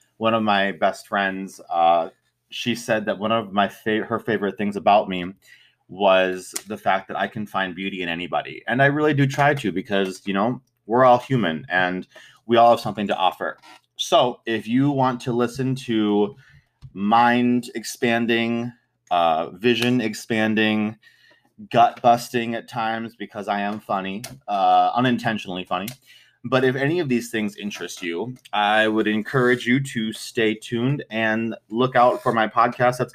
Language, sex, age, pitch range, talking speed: English, male, 30-49, 100-125 Hz, 165 wpm